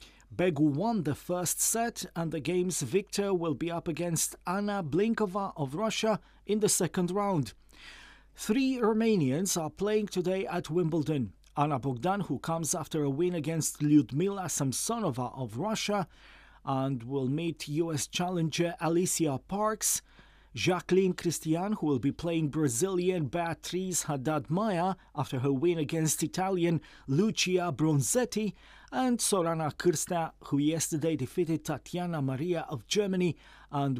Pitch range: 150-190 Hz